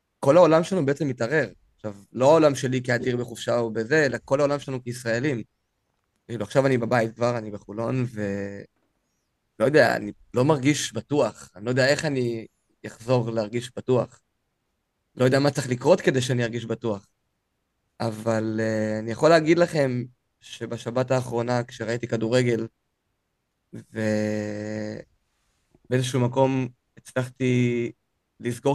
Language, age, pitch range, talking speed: Hebrew, 20-39, 115-135 Hz, 130 wpm